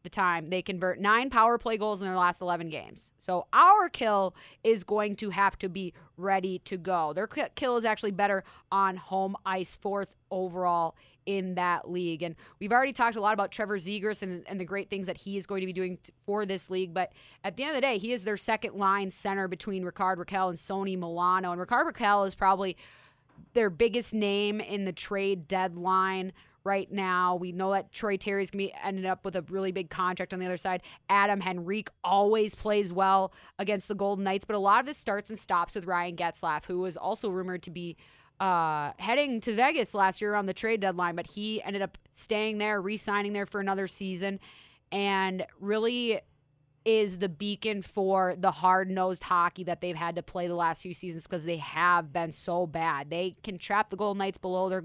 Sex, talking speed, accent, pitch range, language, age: female, 210 wpm, American, 180-205 Hz, English, 20-39